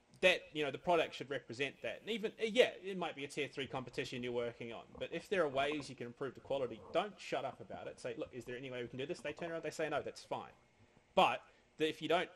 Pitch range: 120-155 Hz